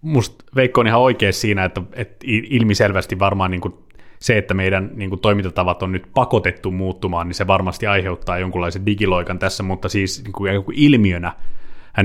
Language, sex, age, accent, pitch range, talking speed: Finnish, male, 30-49, native, 95-115 Hz, 135 wpm